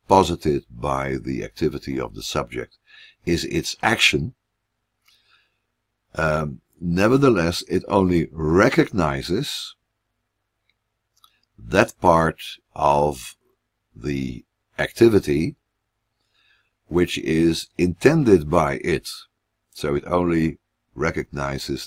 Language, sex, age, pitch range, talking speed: English, male, 60-79, 70-95 Hz, 80 wpm